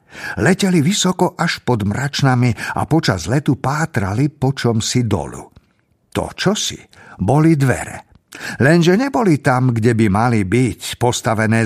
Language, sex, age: Slovak, male, 50-69